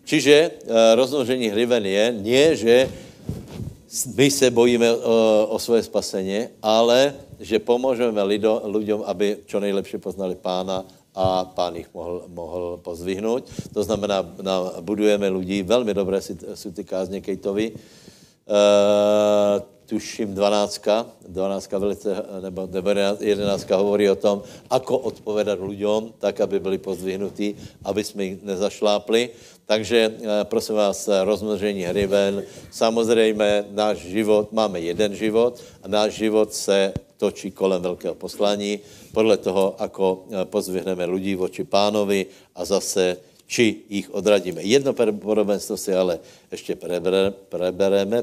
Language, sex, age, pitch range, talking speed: Slovak, male, 60-79, 95-110 Hz, 120 wpm